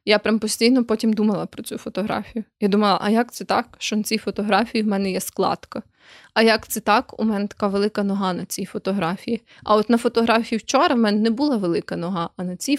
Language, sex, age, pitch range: Ukrainian, female, 20-39, 195-230 Hz